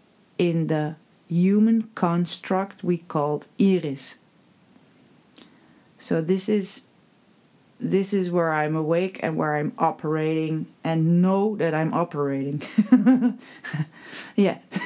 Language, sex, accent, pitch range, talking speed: English, female, Dutch, 160-200 Hz, 100 wpm